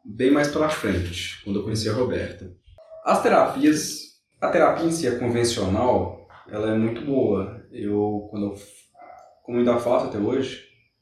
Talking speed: 160 wpm